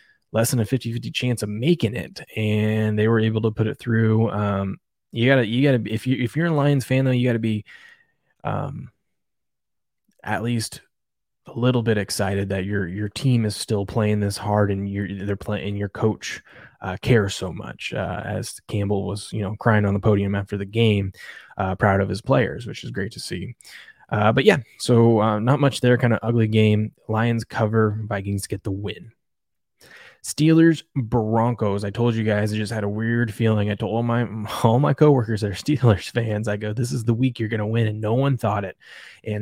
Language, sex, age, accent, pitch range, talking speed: English, male, 20-39, American, 105-120 Hz, 215 wpm